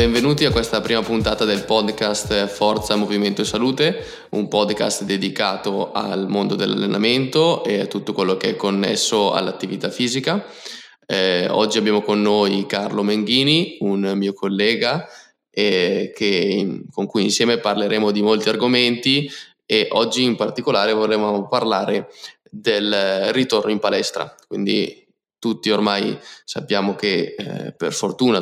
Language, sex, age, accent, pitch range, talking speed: Italian, male, 20-39, native, 100-115 Hz, 130 wpm